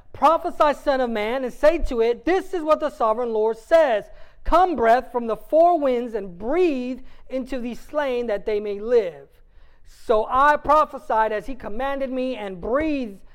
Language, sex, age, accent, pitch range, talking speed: English, male, 30-49, American, 190-275 Hz, 175 wpm